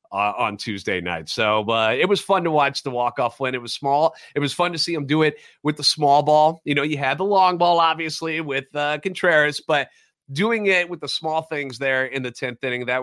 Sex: male